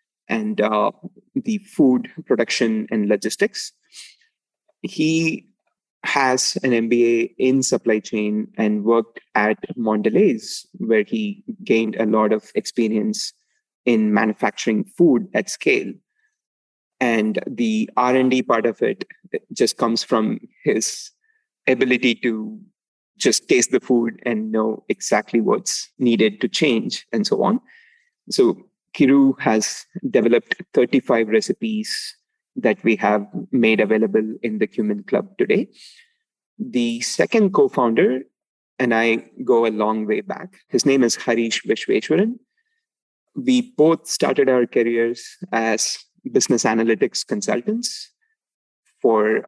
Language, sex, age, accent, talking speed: English, male, 30-49, Indian, 120 wpm